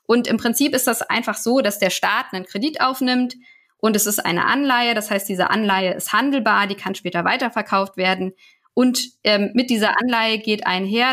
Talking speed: 195 wpm